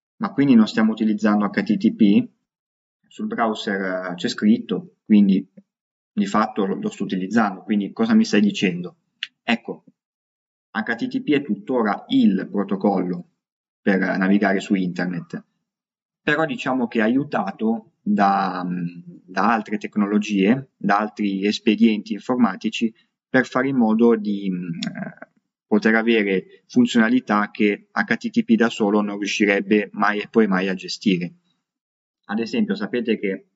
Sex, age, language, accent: male, 20-39, Italian, native